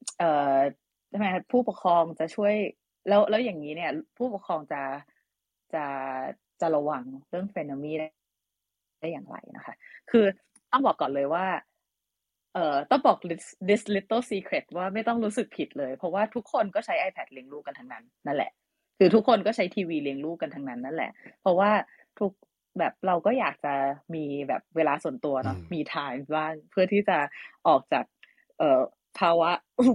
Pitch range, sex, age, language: 155-240 Hz, female, 20-39, English